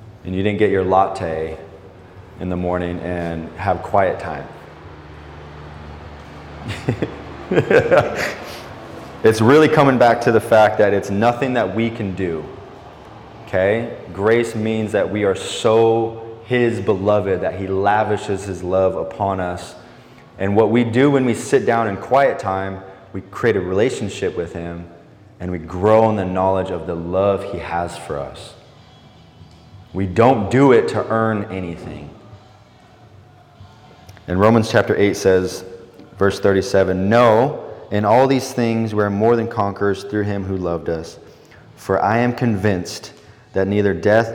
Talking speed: 145 wpm